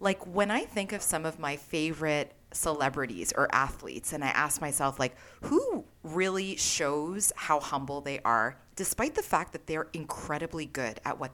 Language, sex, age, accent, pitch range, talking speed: English, female, 30-49, American, 150-210 Hz, 175 wpm